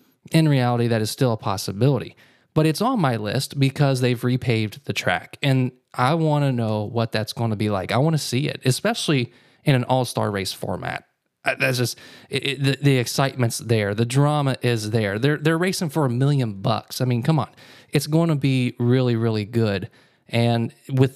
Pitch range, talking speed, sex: 120-150 Hz, 205 wpm, male